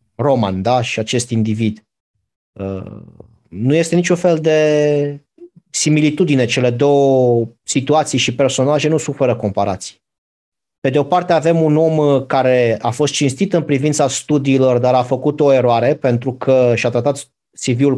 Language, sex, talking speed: Romanian, male, 145 wpm